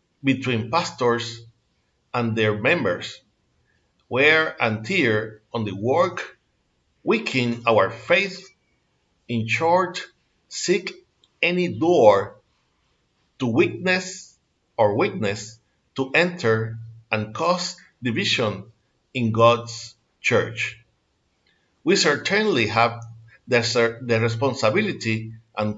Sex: male